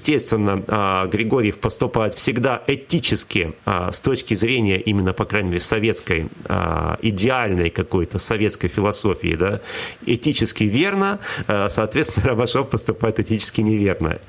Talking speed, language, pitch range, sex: 105 wpm, Russian, 100-130 Hz, male